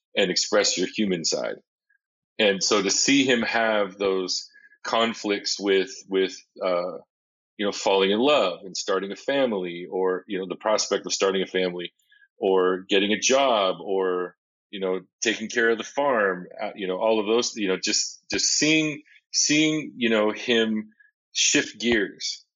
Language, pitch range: English, 95-120 Hz